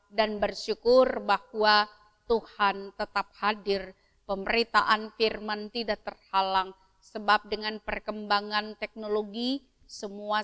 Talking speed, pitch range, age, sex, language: 85 wpm, 205-220 Hz, 30-49, female, Indonesian